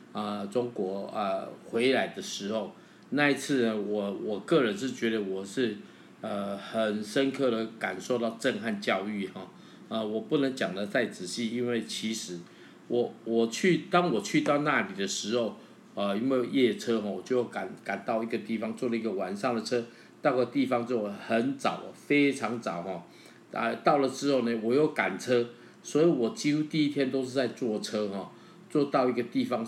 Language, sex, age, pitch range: Chinese, male, 50-69, 105-130 Hz